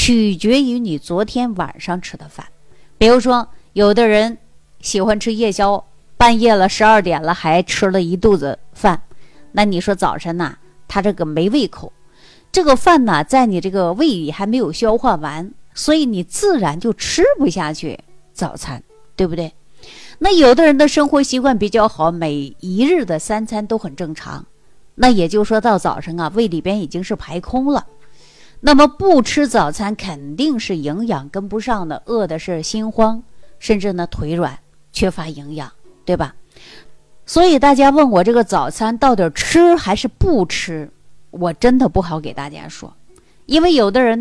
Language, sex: Chinese, female